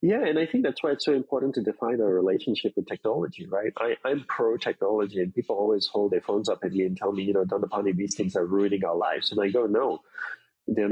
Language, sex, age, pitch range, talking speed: English, male, 30-49, 100-165 Hz, 265 wpm